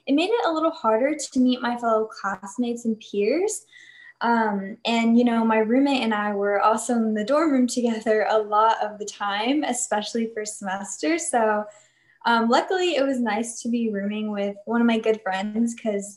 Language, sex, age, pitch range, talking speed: English, female, 10-29, 205-250 Hz, 195 wpm